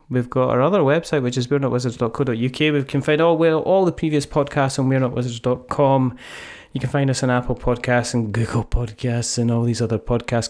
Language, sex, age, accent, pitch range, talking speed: English, male, 20-39, British, 120-155 Hz, 195 wpm